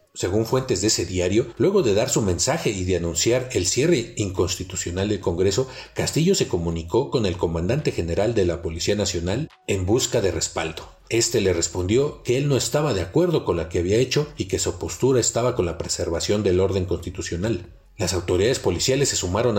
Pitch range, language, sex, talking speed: 90-120 Hz, Spanish, male, 195 wpm